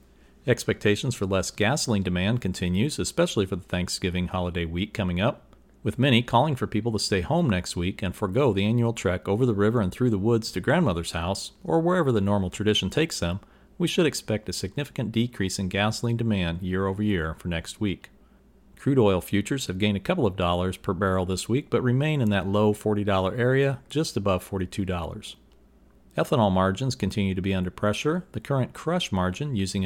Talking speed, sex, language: 190 wpm, male, English